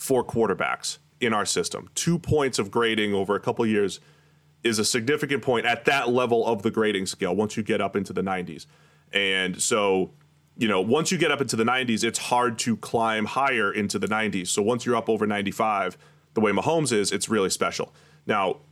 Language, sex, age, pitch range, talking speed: English, male, 30-49, 95-125 Hz, 210 wpm